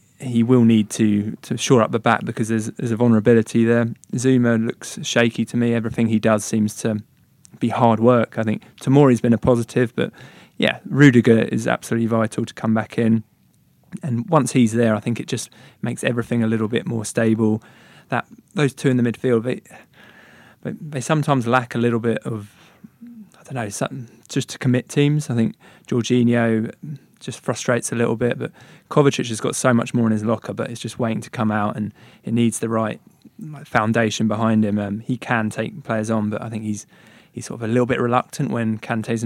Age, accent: 20-39, British